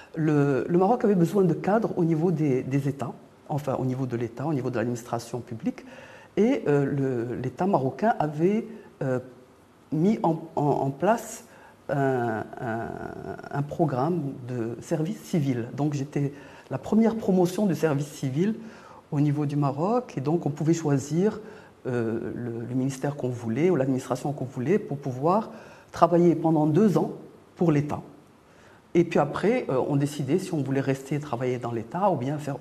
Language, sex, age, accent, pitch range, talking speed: French, female, 50-69, French, 130-170 Hz, 165 wpm